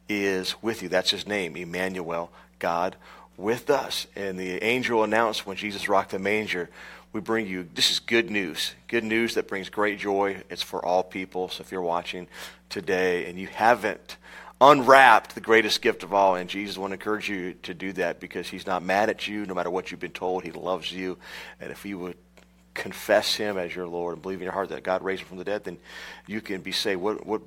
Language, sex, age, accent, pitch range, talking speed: English, male, 40-59, American, 90-105 Hz, 225 wpm